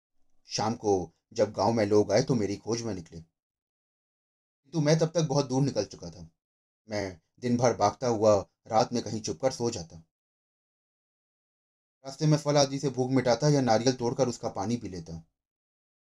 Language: Hindi